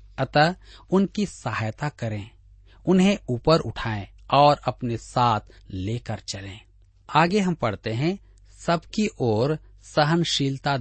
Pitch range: 100-155 Hz